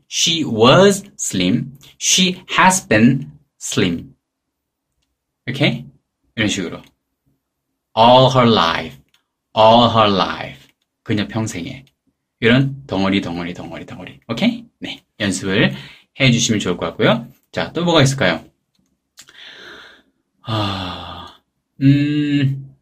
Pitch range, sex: 110-175 Hz, male